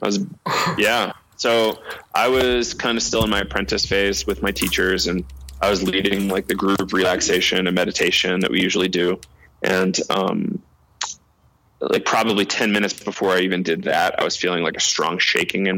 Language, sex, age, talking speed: English, male, 20-39, 185 wpm